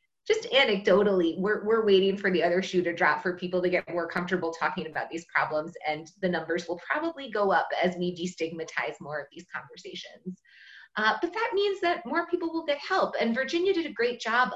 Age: 30-49